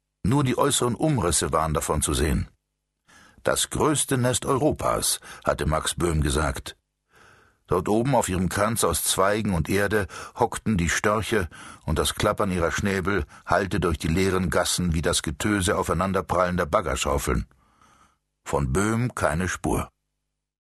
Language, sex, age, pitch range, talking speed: German, male, 60-79, 85-115 Hz, 135 wpm